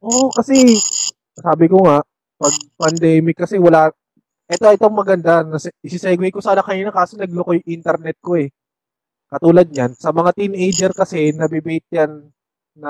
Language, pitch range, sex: Filipino, 155-195 Hz, male